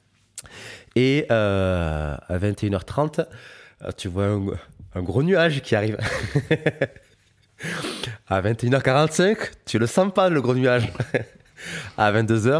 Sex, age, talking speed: male, 20-39, 110 wpm